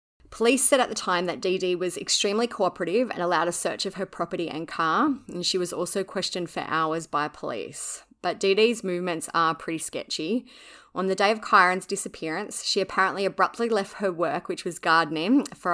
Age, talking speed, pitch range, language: 20-39, 200 wpm, 165-200 Hz, English